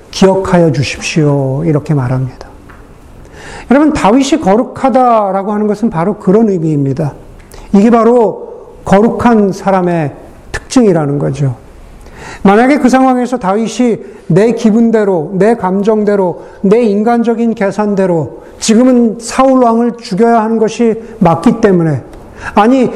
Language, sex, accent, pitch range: Korean, male, native, 180-235 Hz